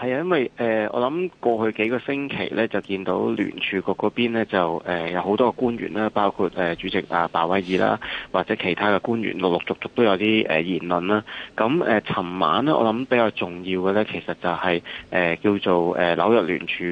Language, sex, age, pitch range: Chinese, male, 20-39, 90-110 Hz